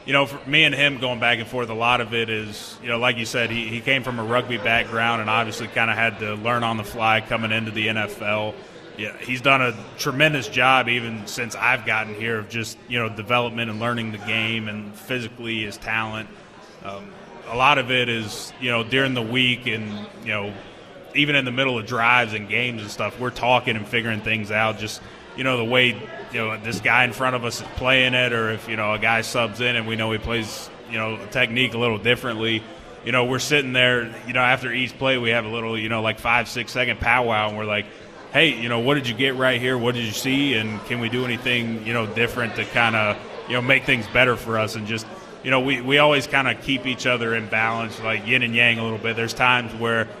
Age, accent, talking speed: 20-39, American, 250 wpm